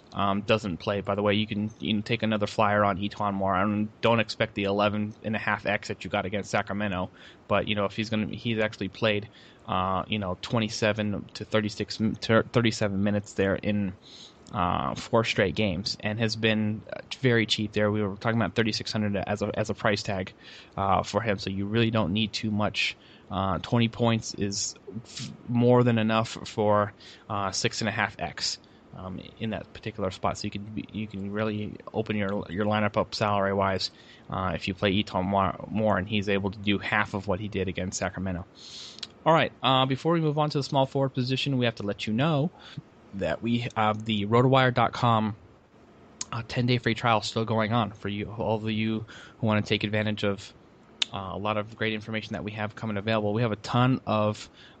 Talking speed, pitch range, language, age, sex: 210 wpm, 100-110 Hz, English, 20-39, male